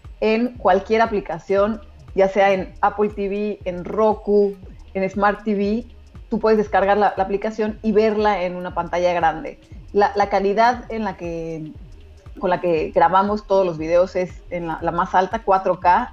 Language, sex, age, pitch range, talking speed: Spanish, female, 30-49, 180-215 Hz, 165 wpm